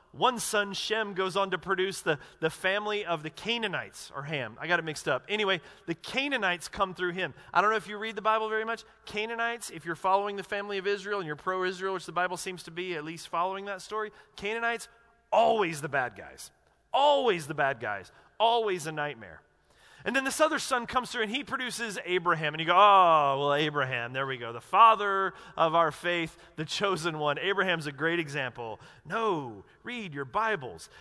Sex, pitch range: male, 170-225 Hz